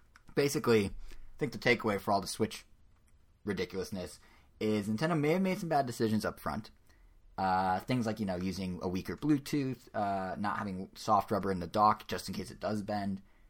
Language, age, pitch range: English, 20-39, 90-110 Hz